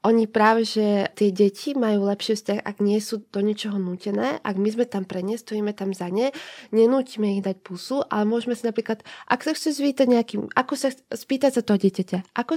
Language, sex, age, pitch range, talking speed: Slovak, female, 20-39, 195-235 Hz, 215 wpm